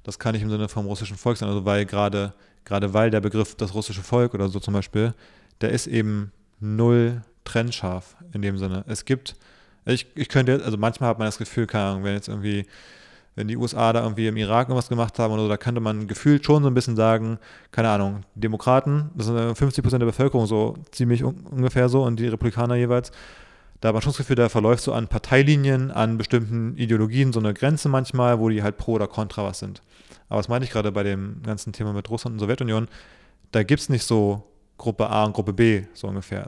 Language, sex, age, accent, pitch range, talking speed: German, male, 30-49, German, 100-120 Hz, 225 wpm